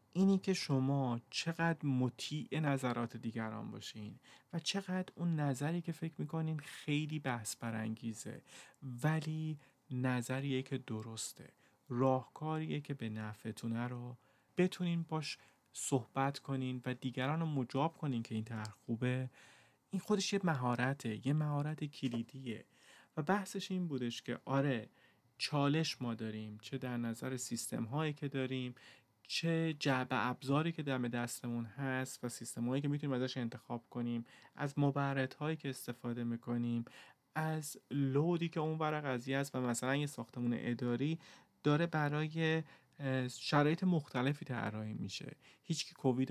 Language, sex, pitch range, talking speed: Persian, male, 120-150 Hz, 135 wpm